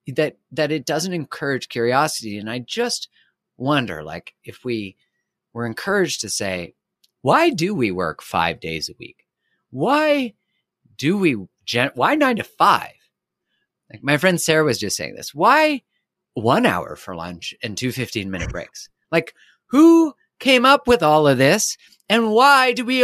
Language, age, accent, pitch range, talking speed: English, 30-49, American, 130-200 Hz, 165 wpm